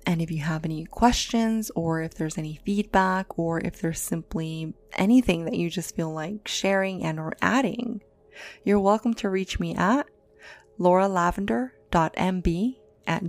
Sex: female